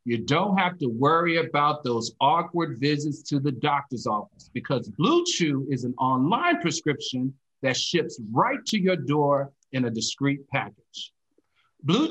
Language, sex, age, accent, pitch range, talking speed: English, male, 50-69, American, 135-195 Hz, 155 wpm